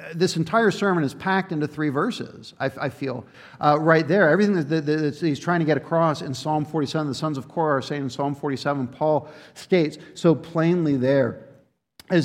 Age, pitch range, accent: 50-69, 155-225 Hz, American